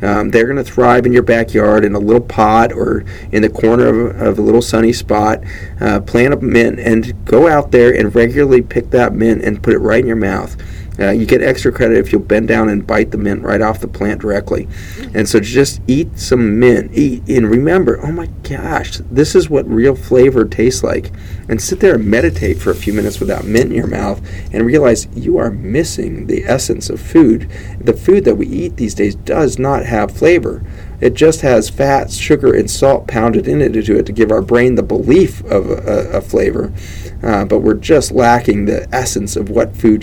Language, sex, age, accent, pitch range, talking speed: English, male, 40-59, American, 100-115 Hz, 215 wpm